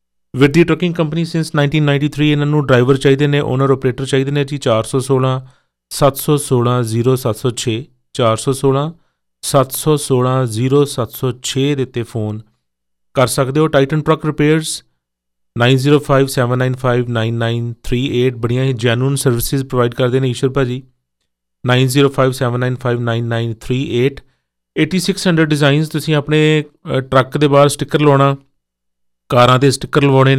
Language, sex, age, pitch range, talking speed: Punjabi, male, 40-59, 120-135 Hz, 95 wpm